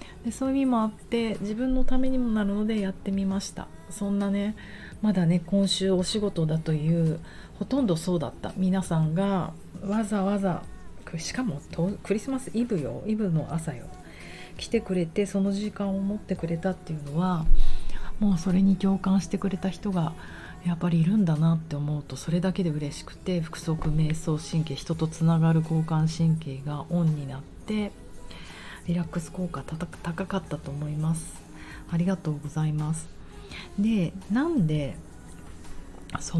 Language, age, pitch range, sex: Japanese, 40-59, 155-200 Hz, female